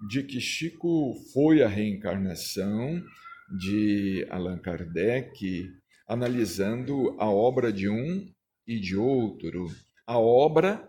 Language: Portuguese